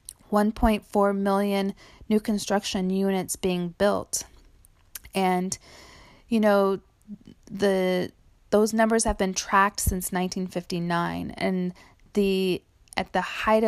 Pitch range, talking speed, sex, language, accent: 175-200 Hz, 95 wpm, female, English, American